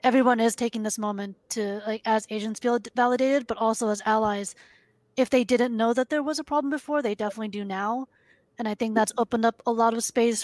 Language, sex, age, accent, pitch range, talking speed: English, female, 30-49, American, 210-235 Hz, 225 wpm